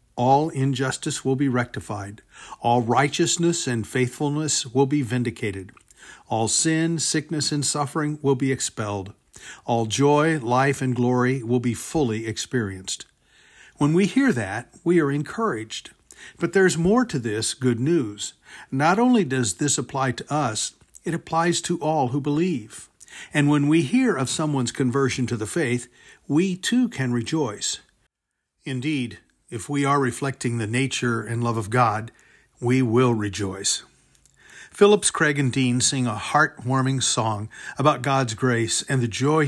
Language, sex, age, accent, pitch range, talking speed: English, male, 50-69, American, 115-150 Hz, 150 wpm